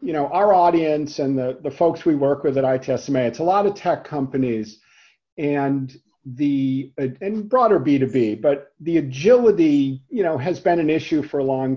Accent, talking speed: American, 190 wpm